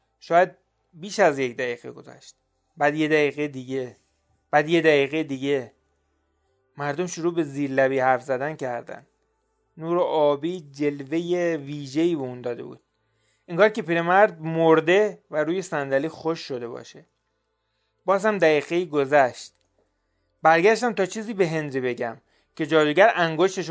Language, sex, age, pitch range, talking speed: Persian, male, 30-49, 130-170 Hz, 135 wpm